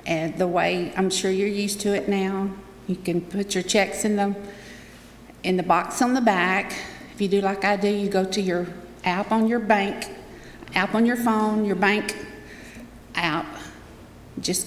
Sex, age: female, 50-69